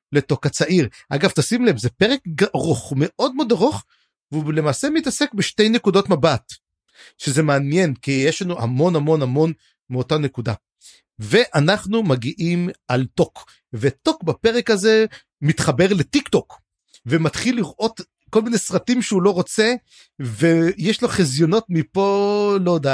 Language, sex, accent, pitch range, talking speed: Hebrew, male, native, 140-205 Hz, 130 wpm